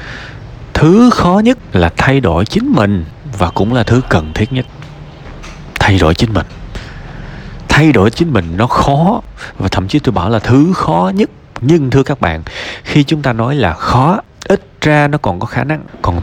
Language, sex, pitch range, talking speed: Vietnamese, male, 95-130 Hz, 190 wpm